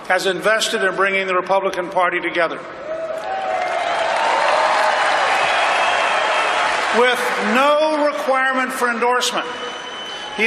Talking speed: 80 wpm